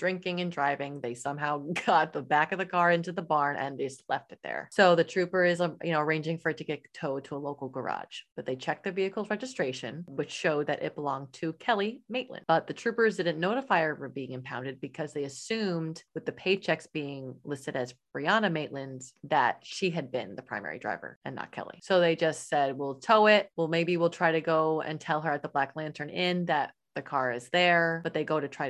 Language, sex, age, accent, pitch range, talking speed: English, female, 30-49, American, 135-175 Hz, 230 wpm